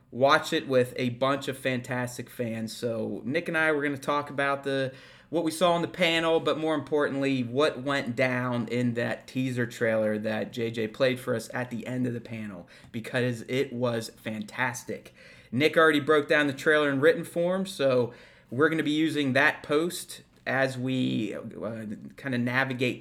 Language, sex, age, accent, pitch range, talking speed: English, male, 30-49, American, 120-150 Hz, 190 wpm